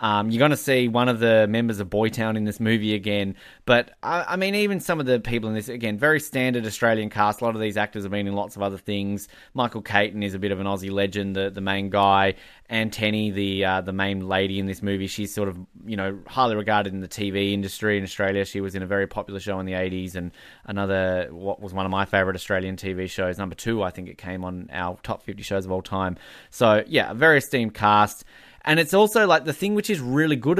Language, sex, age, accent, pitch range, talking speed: English, male, 20-39, Australian, 100-120 Hz, 255 wpm